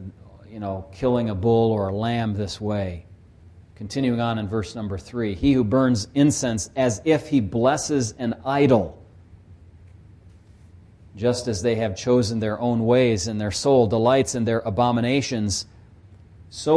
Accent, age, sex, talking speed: American, 40-59, male, 150 wpm